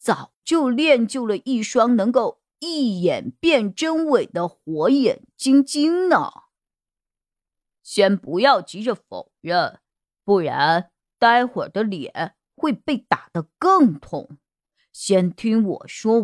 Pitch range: 190-260 Hz